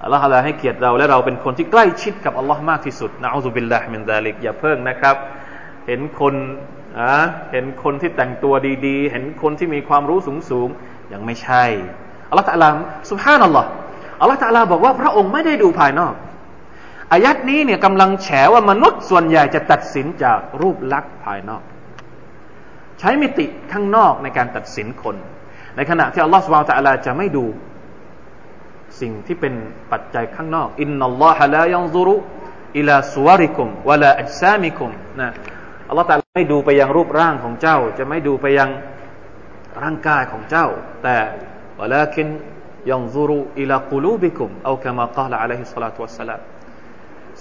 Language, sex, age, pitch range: Thai, male, 20-39, 125-170 Hz